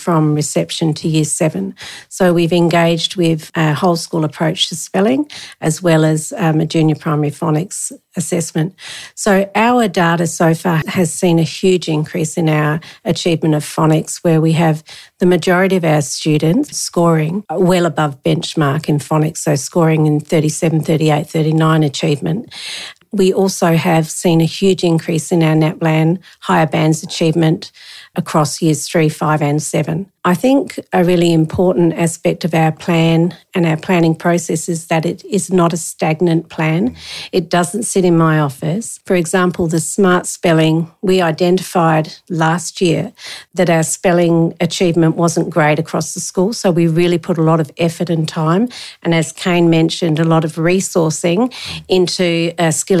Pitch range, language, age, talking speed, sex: 160-180 Hz, English, 50-69, 165 wpm, female